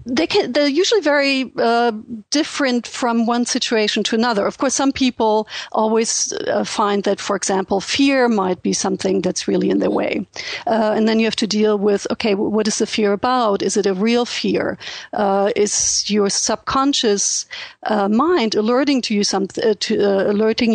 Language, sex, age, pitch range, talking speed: English, female, 50-69, 205-255 Hz, 160 wpm